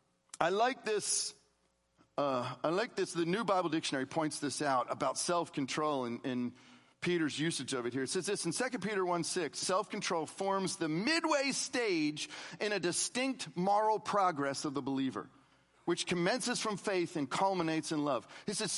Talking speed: 180 wpm